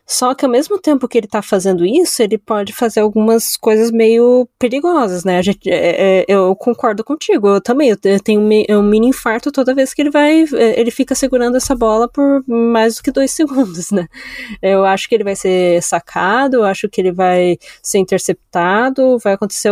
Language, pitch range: Portuguese, 185-235 Hz